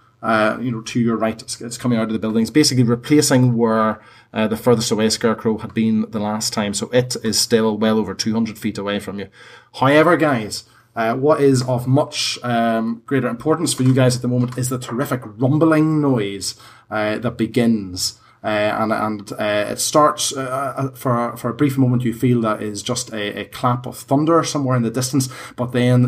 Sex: male